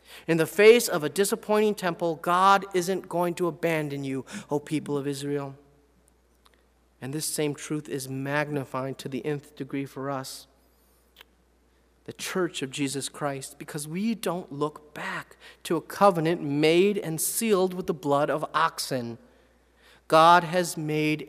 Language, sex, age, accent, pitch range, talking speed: English, male, 40-59, American, 150-215 Hz, 150 wpm